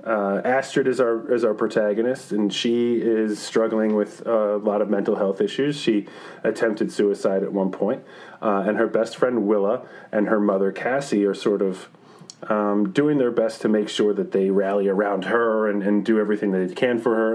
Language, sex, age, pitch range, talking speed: English, male, 30-49, 100-120 Hz, 200 wpm